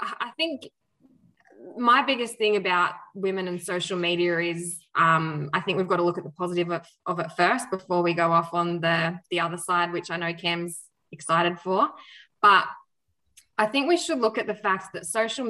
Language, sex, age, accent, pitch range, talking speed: English, female, 20-39, Australian, 170-185 Hz, 200 wpm